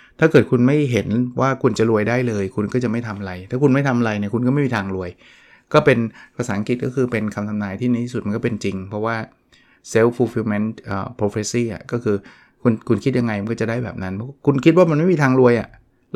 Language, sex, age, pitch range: Thai, male, 20-39, 105-125 Hz